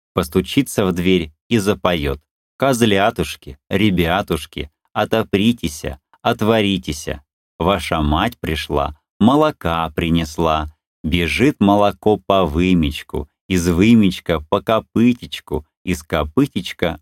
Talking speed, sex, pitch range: 85 wpm, male, 80-105 Hz